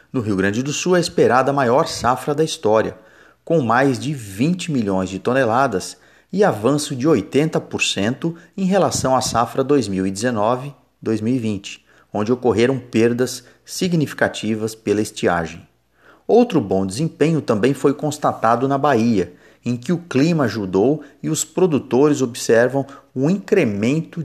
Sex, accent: male, Brazilian